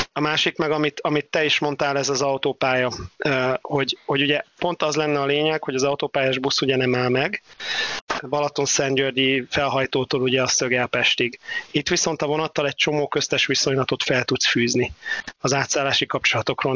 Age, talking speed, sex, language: 30-49, 170 wpm, male, Hungarian